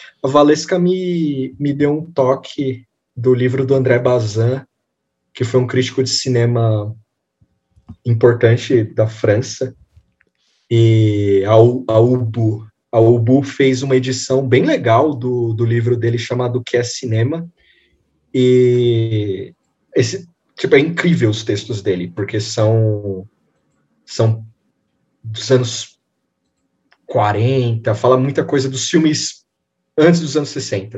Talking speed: 115 wpm